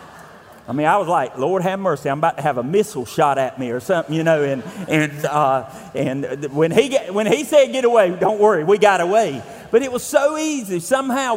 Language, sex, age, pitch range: English, male, 40-59, 145-215 Hz